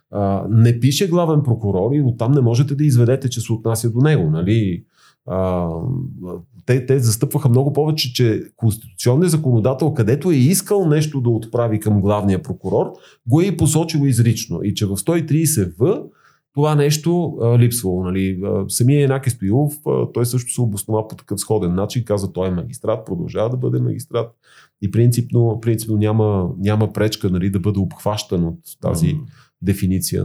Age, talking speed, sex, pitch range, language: 30-49, 160 wpm, male, 100-130 Hz, Bulgarian